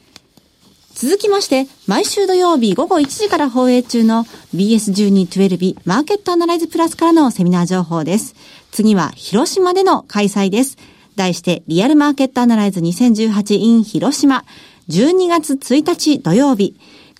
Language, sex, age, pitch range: Japanese, female, 50-69, 195-295 Hz